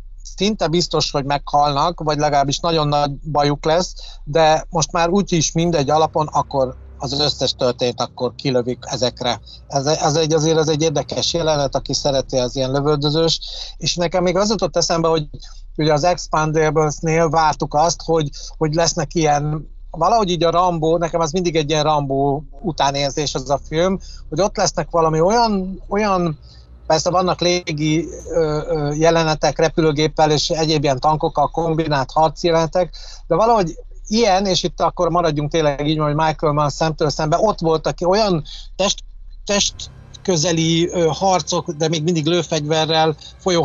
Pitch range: 145-170 Hz